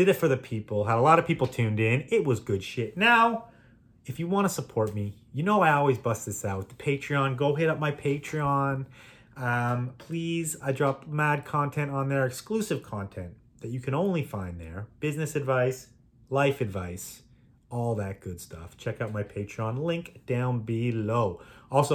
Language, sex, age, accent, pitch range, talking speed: English, male, 30-49, American, 115-145 Hz, 185 wpm